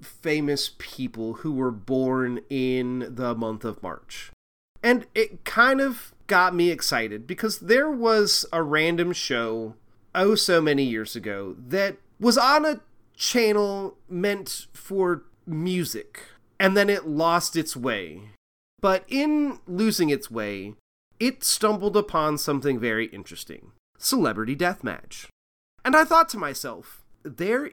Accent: American